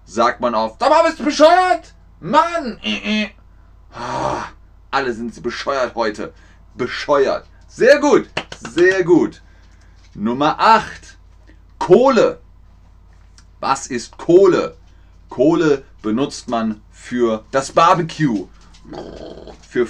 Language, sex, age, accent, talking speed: German, male, 30-49, German, 105 wpm